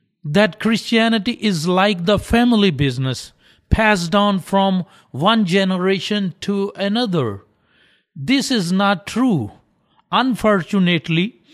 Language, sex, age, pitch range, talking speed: English, male, 50-69, 160-205 Hz, 100 wpm